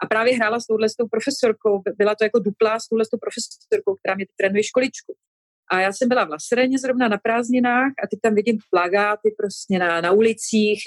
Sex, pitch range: female, 180-220 Hz